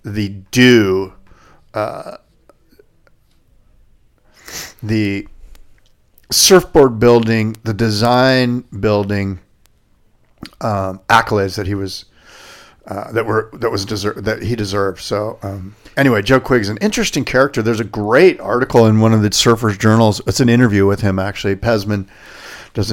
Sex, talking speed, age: male, 130 wpm, 40-59